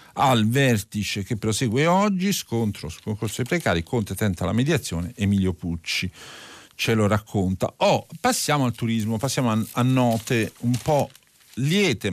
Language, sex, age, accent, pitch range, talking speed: Italian, male, 50-69, native, 105-145 Hz, 145 wpm